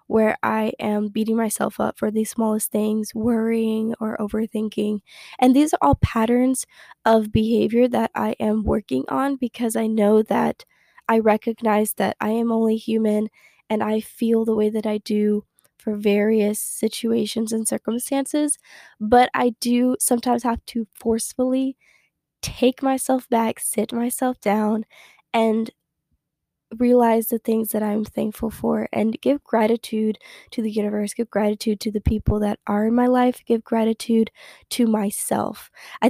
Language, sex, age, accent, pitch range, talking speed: English, female, 10-29, American, 215-240 Hz, 150 wpm